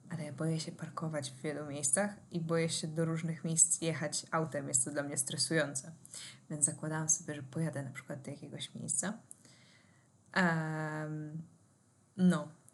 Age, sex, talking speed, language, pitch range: 20-39, female, 150 wpm, Polish, 155-180 Hz